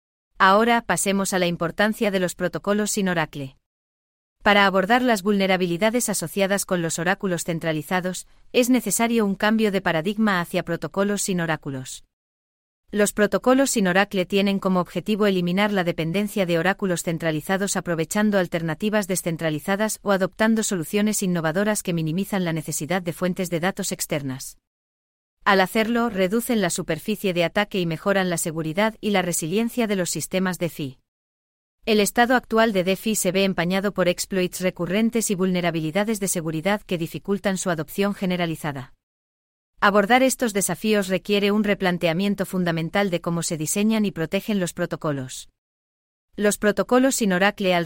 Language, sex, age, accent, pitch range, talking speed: English, female, 30-49, Spanish, 165-205 Hz, 145 wpm